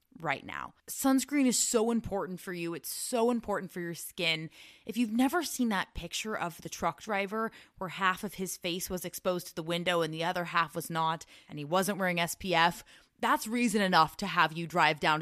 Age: 20-39